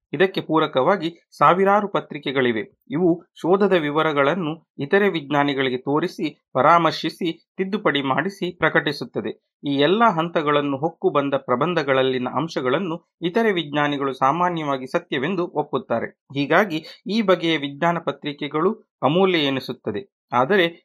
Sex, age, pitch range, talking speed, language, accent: male, 30-49, 140-180 Hz, 95 wpm, Kannada, native